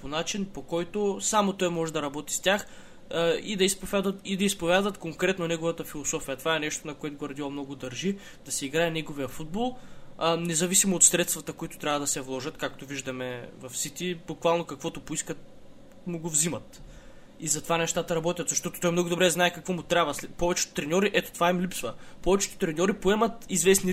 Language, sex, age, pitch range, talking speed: Bulgarian, male, 20-39, 150-180 Hz, 185 wpm